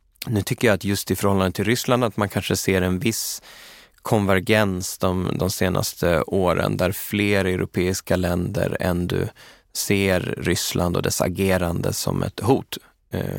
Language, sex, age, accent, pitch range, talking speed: Swedish, male, 20-39, native, 90-105 Hz, 150 wpm